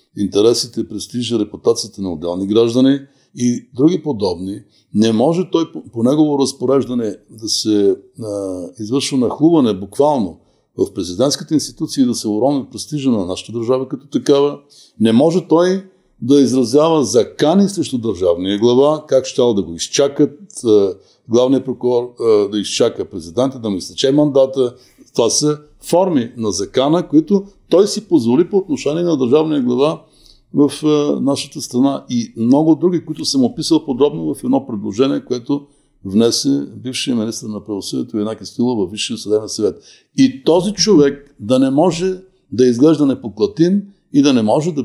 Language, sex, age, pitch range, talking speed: Bulgarian, male, 60-79, 115-170 Hz, 155 wpm